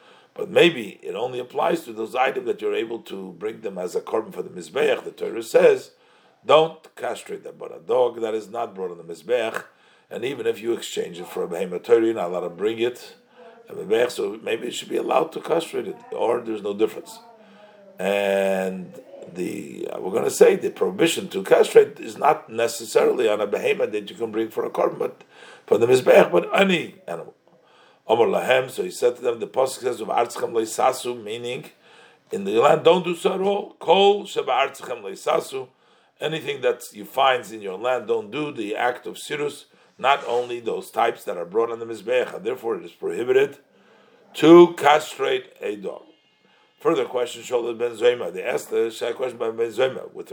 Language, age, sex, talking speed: English, 50-69, male, 190 wpm